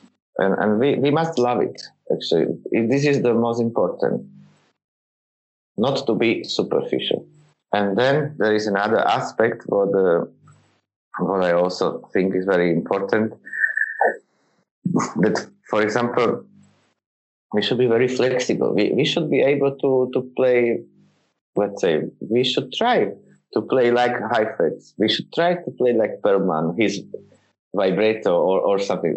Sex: male